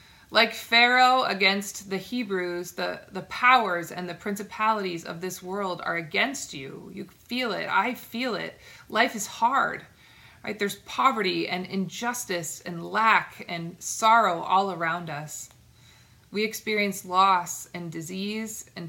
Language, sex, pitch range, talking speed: English, female, 165-210 Hz, 140 wpm